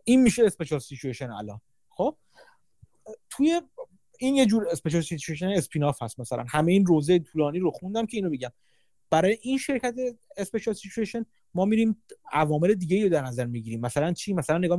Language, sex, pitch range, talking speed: Persian, male, 140-215 Hz, 160 wpm